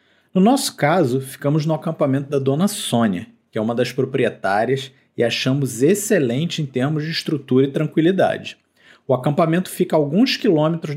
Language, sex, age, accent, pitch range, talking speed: Portuguese, male, 40-59, Brazilian, 140-190 Hz, 160 wpm